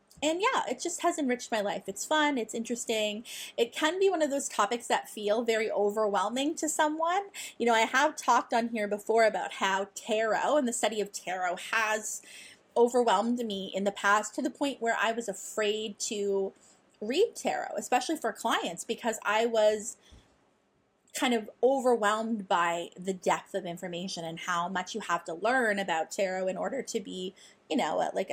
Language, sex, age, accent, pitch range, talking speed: English, female, 20-39, American, 200-275 Hz, 185 wpm